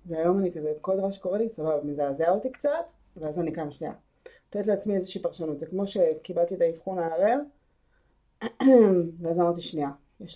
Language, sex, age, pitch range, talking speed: Hebrew, female, 30-49, 160-220 Hz, 170 wpm